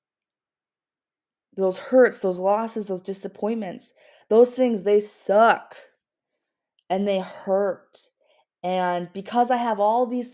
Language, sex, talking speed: English, female, 110 wpm